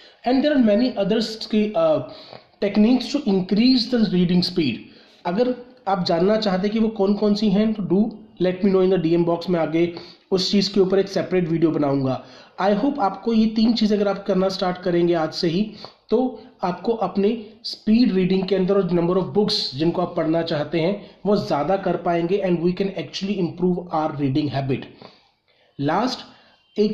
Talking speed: 145 wpm